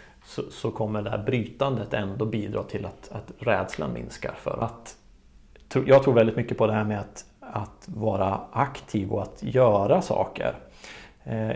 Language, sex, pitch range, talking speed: Swedish, male, 110-135 Hz, 160 wpm